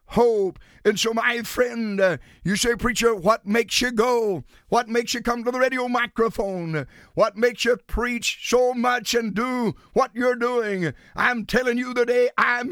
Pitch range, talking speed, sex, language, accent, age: 210-270 Hz, 170 wpm, male, English, American, 60-79